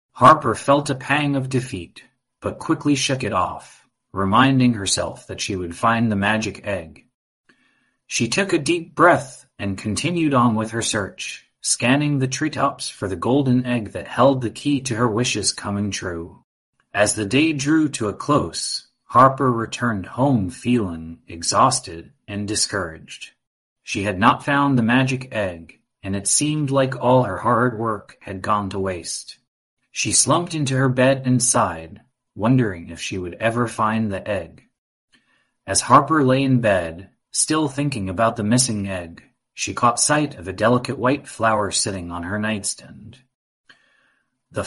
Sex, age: male, 30-49